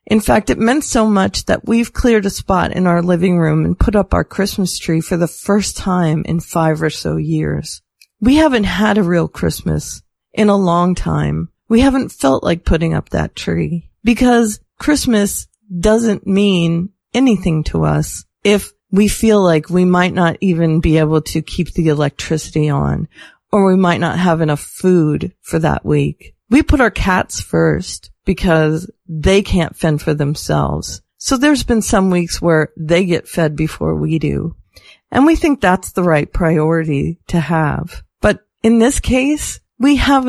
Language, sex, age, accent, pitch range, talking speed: English, female, 40-59, American, 160-210 Hz, 175 wpm